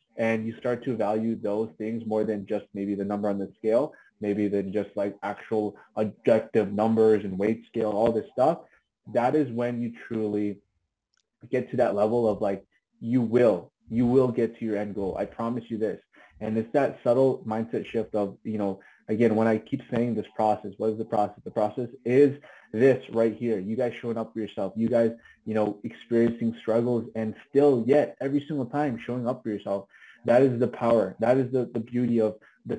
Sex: male